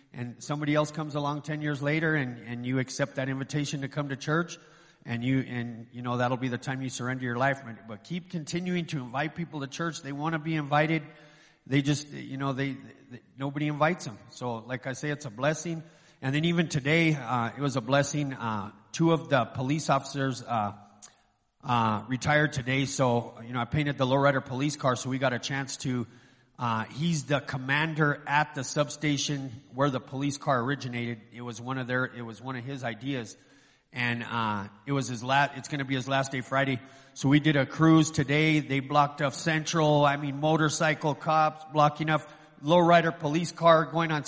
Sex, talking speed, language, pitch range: male, 205 wpm, English, 130-155 Hz